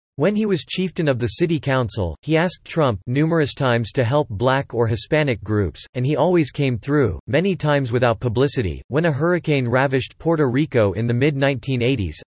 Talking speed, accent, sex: 180 wpm, American, male